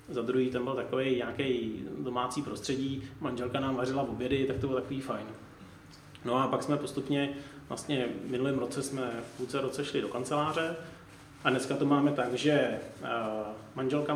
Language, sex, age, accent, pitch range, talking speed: Czech, male, 30-49, native, 125-145 Hz, 175 wpm